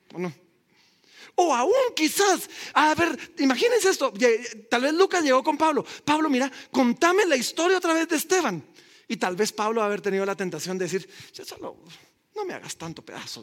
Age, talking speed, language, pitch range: 40-59, 180 wpm, Spanish, 160-245 Hz